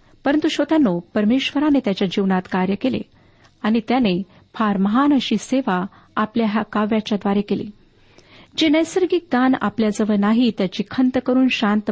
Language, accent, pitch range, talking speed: Marathi, native, 200-260 Hz, 125 wpm